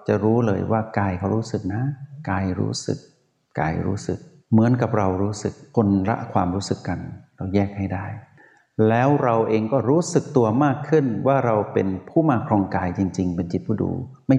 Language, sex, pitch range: Thai, male, 100-125 Hz